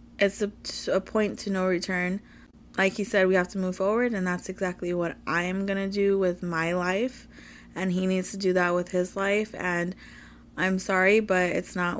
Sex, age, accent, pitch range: female, 20-39, American, 175-195 Hz